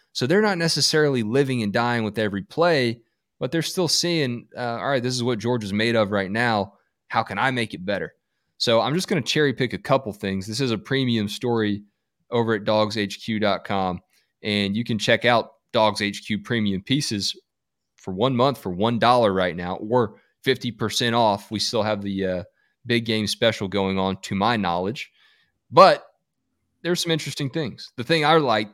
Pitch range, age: 100-120 Hz, 20-39